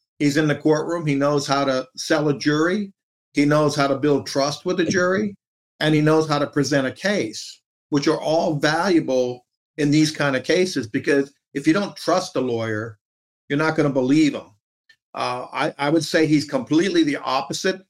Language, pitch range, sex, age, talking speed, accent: English, 140-170 Hz, male, 50-69, 200 wpm, American